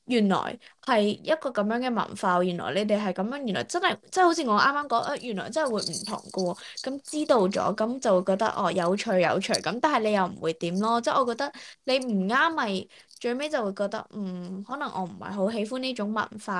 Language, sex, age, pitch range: Chinese, female, 20-39, 190-250 Hz